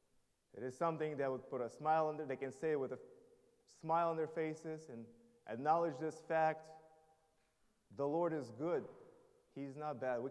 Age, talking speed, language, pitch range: 30-49, 185 wpm, English, 130-160 Hz